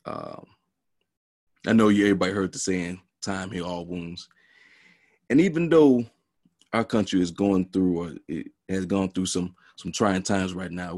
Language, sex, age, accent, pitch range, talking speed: English, male, 30-49, American, 95-110 Hz, 170 wpm